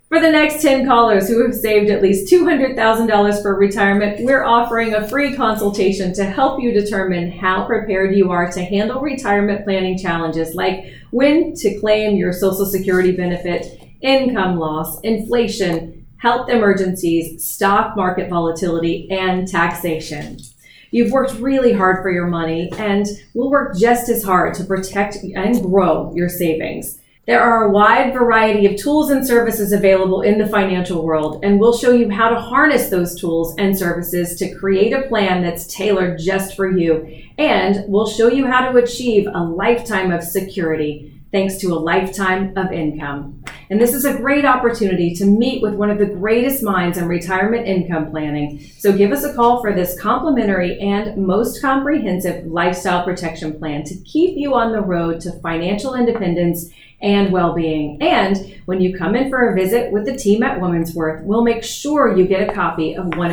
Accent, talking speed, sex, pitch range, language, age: American, 175 wpm, female, 175-230 Hz, English, 30-49